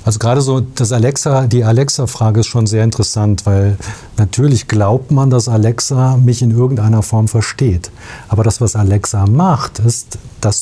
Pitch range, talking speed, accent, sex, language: 105-135 Hz, 165 wpm, German, male, German